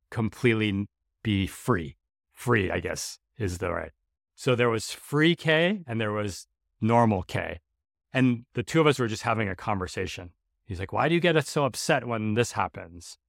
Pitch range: 95-120 Hz